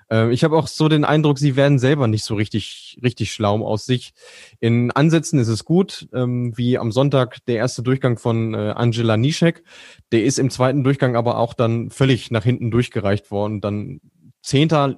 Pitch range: 115-135 Hz